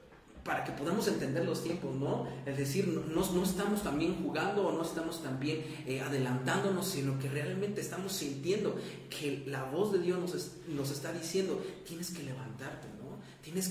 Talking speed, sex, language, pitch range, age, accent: 180 wpm, male, Spanish, 135-170 Hz, 40-59, Mexican